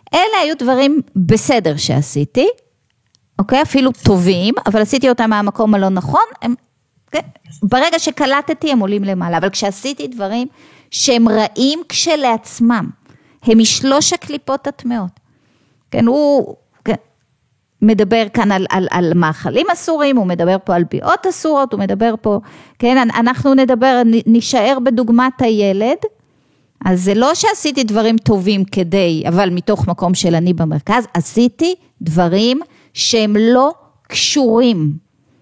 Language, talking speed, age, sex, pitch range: Hebrew, 125 wpm, 30-49, female, 175-260 Hz